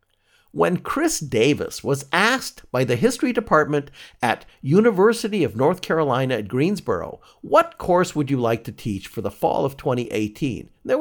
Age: 50-69